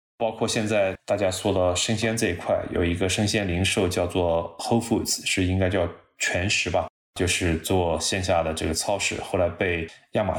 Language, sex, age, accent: Chinese, male, 20-39, native